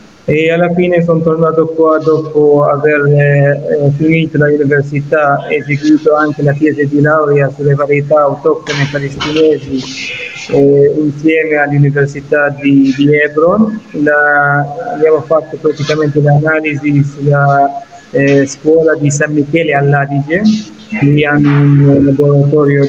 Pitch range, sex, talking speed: 145-160 Hz, male, 115 wpm